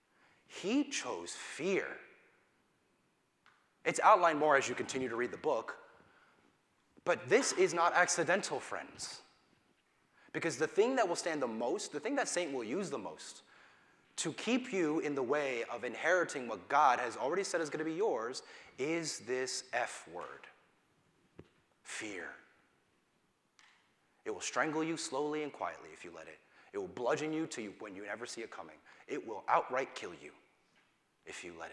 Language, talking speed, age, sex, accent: English, 165 wpm, 30-49, male, American